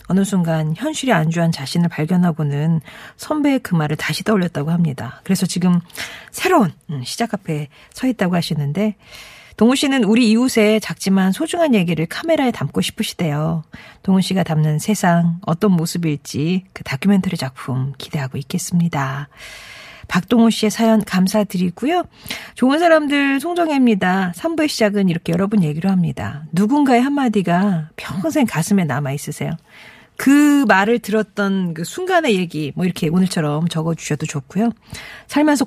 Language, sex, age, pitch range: Korean, female, 40-59, 160-225 Hz